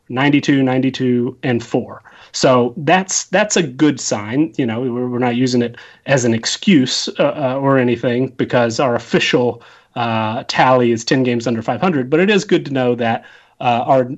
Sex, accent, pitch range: male, American, 120-145 Hz